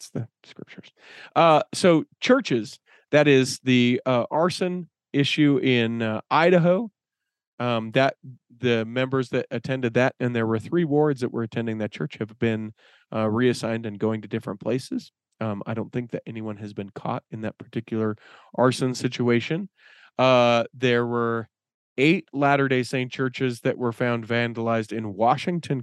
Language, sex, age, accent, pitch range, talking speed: English, male, 40-59, American, 115-140 Hz, 155 wpm